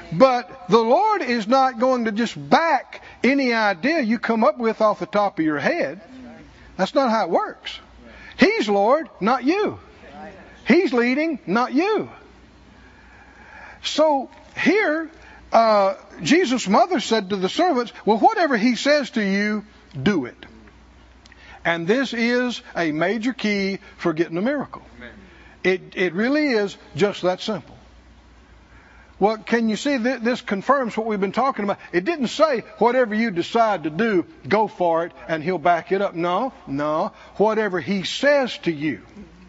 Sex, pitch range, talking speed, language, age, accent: male, 190-265 Hz, 155 wpm, English, 60-79, American